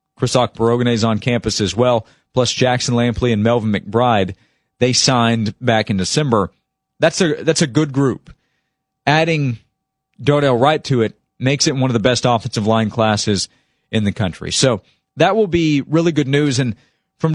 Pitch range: 110-140 Hz